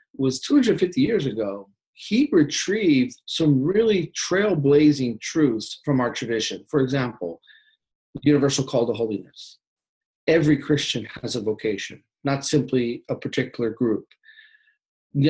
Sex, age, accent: male, 40-59, American